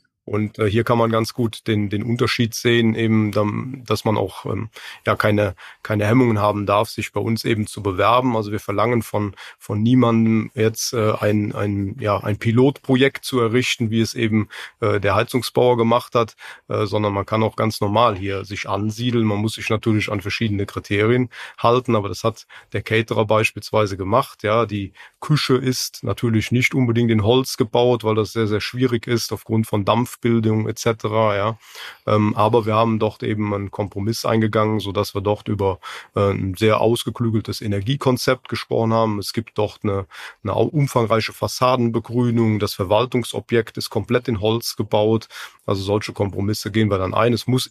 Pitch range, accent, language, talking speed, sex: 105-120 Hz, German, German, 170 wpm, male